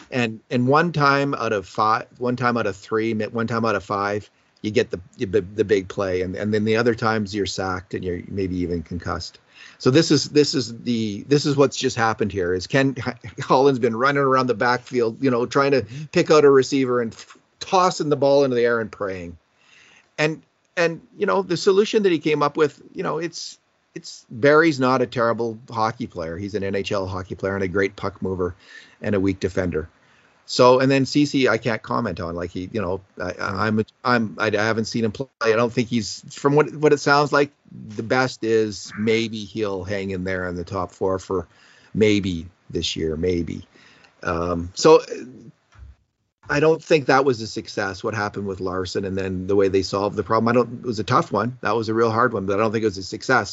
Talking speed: 225 wpm